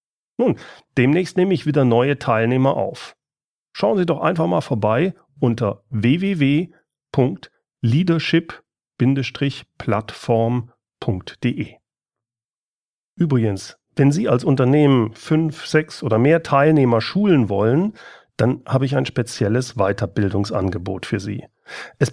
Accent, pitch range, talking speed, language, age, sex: German, 115-155 Hz, 100 wpm, German, 40-59, male